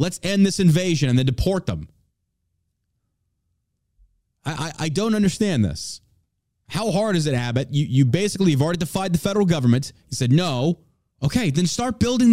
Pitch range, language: 120-155 Hz, English